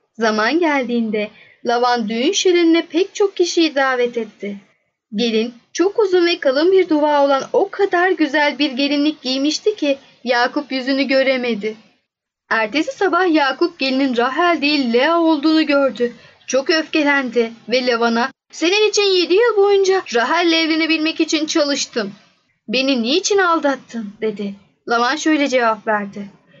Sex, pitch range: female, 230-315 Hz